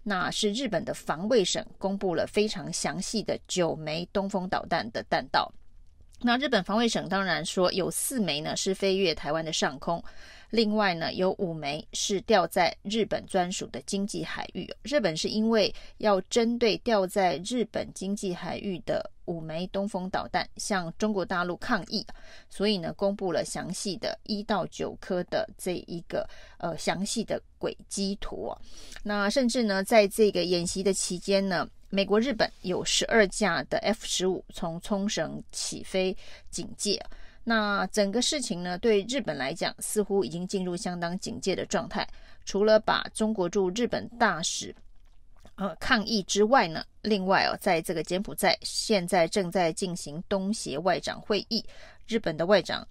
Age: 30-49